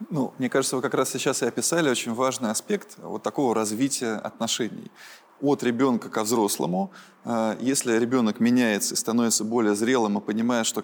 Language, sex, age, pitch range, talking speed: Russian, male, 20-39, 120-170 Hz, 165 wpm